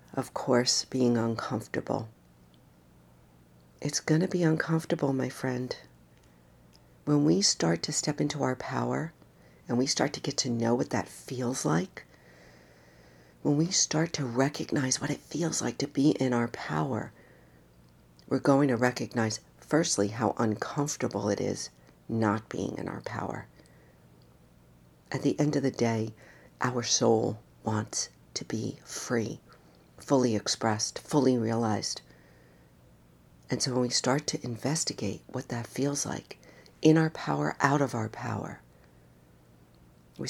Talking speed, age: 140 wpm, 50-69